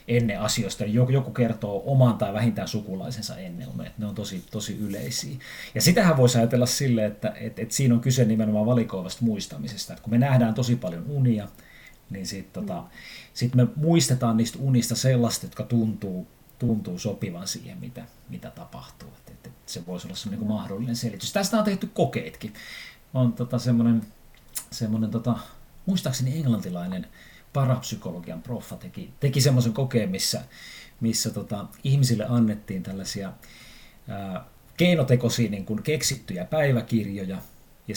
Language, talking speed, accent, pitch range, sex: Finnish, 140 wpm, native, 105-130 Hz, male